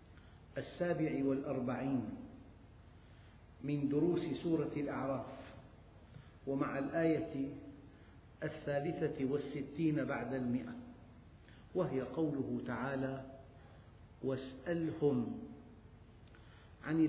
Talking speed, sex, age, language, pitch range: 60 wpm, male, 50-69, Arabic, 110-150 Hz